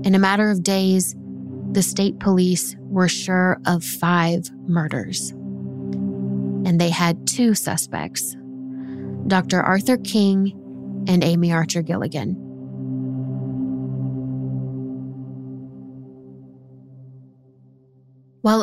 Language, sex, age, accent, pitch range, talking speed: English, female, 20-39, American, 145-205 Hz, 85 wpm